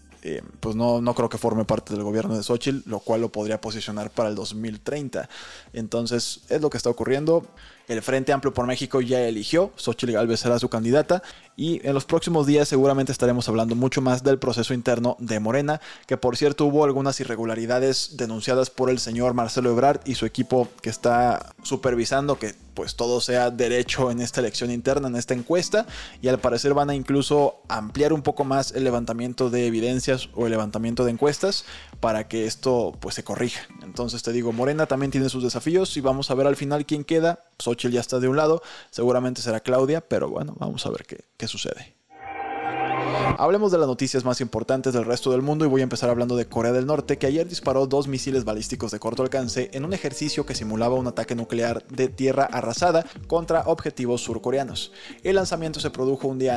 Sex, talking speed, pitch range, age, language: male, 200 wpm, 120-145 Hz, 20-39, Spanish